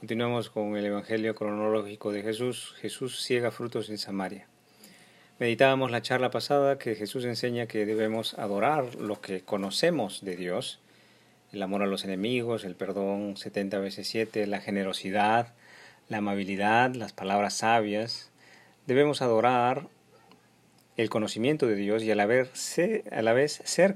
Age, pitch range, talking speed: 40-59, 100-125 Hz, 140 wpm